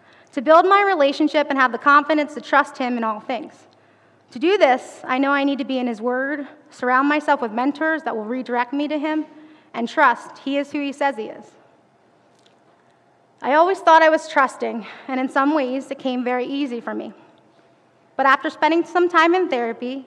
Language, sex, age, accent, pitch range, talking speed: English, female, 20-39, American, 250-300 Hz, 205 wpm